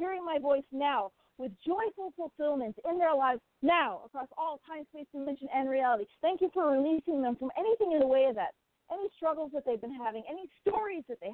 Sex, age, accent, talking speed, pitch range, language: female, 40-59, American, 210 wpm, 265-330 Hz, English